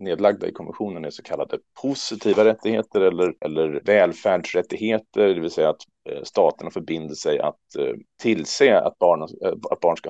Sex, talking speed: male, 150 wpm